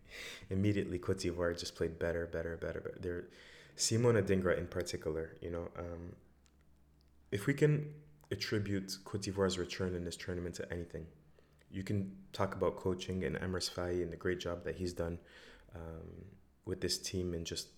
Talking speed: 165 wpm